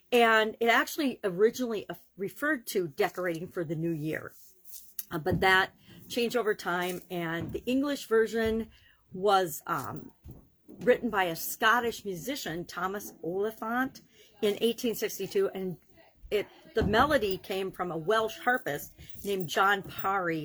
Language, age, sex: English, 50-69, female